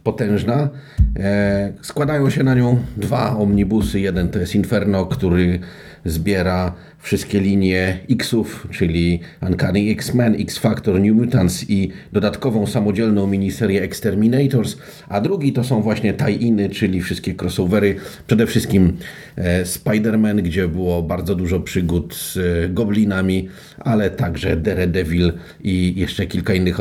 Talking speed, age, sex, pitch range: 120 wpm, 40-59, male, 95-125 Hz